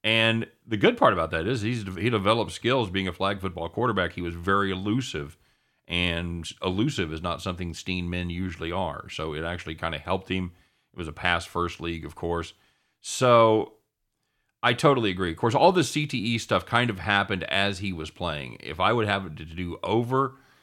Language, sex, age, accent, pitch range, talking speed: English, male, 40-59, American, 80-105 Hz, 200 wpm